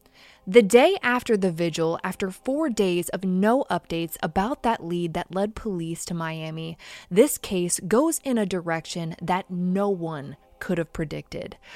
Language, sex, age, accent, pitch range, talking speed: English, female, 20-39, American, 175-235 Hz, 160 wpm